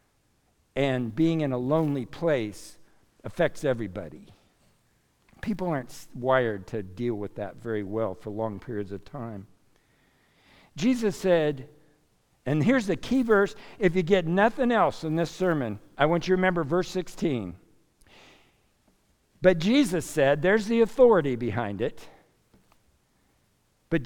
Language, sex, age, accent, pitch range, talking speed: English, male, 60-79, American, 125-195 Hz, 130 wpm